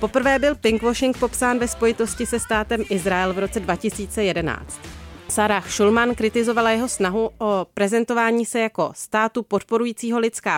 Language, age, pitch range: Czech, 30-49, 195-235 Hz